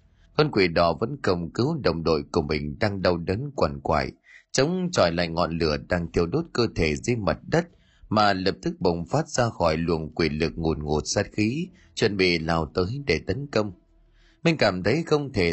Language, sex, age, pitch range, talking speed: Vietnamese, male, 20-39, 85-130 Hz, 210 wpm